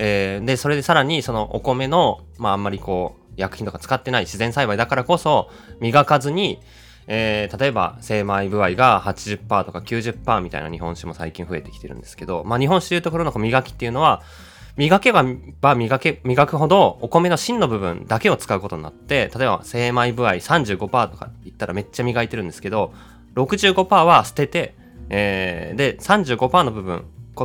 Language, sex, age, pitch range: Japanese, male, 20-39, 95-150 Hz